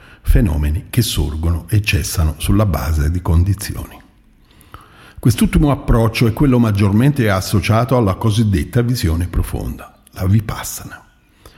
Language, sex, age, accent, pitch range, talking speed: Italian, male, 50-69, native, 90-115 Hz, 110 wpm